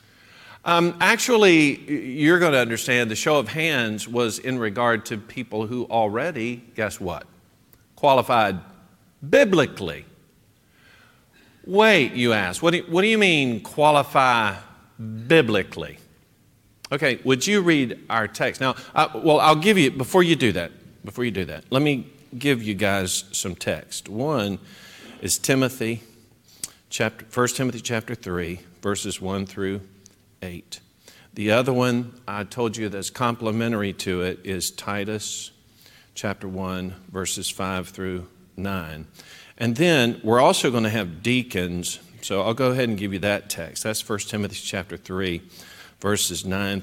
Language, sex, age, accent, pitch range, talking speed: English, male, 50-69, American, 95-125 Hz, 145 wpm